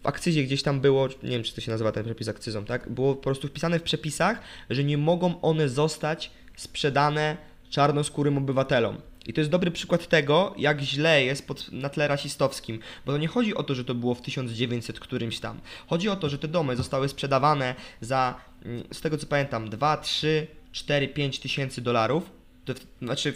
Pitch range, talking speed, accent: 130-165 Hz, 200 wpm, native